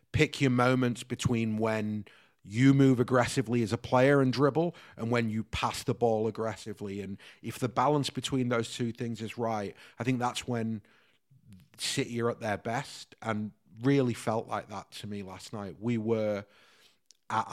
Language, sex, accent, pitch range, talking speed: English, male, British, 110-130 Hz, 175 wpm